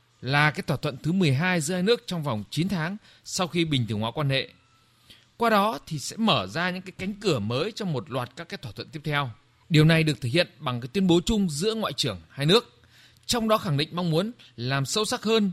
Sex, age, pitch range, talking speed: male, 20-39, 125-185 Hz, 250 wpm